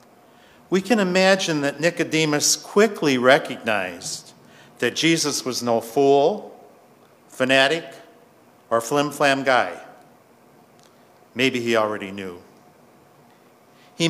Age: 50-69